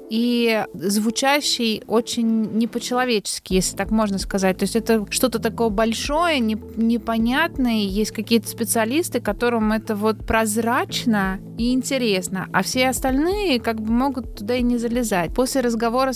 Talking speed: 135 wpm